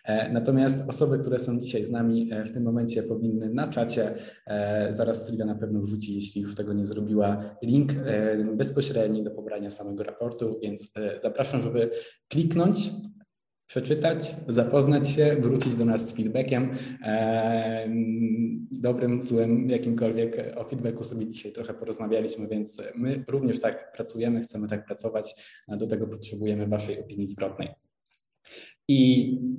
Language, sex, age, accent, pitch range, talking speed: Polish, male, 20-39, native, 105-130 Hz, 135 wpm